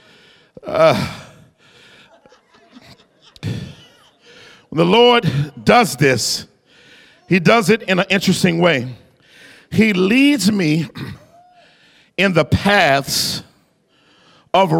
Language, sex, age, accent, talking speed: English, male, 50-69, American, 80 wpm